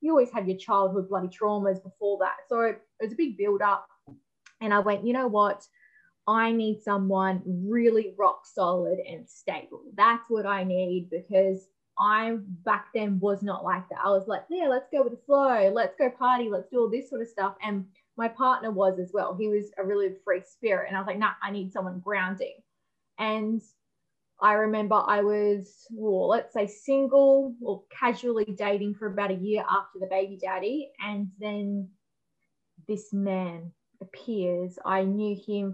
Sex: female